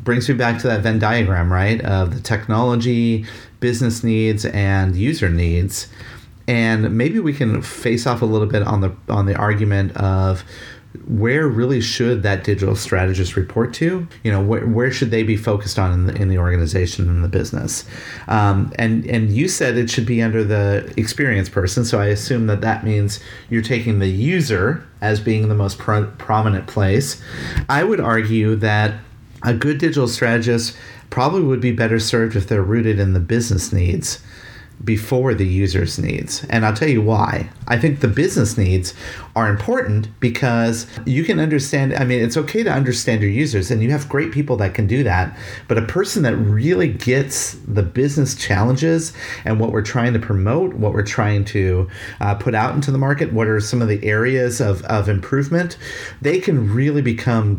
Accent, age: American, 30-49